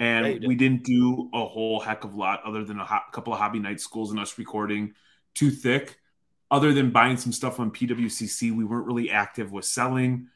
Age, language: 20-39, English